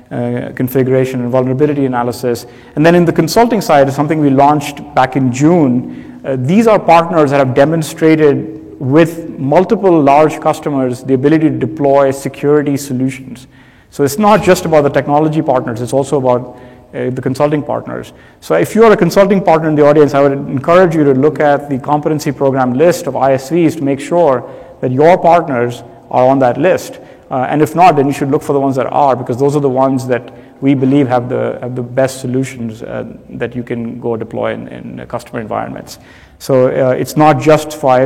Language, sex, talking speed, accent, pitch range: English, male, 200 wpm, Indian, 130-155 Hz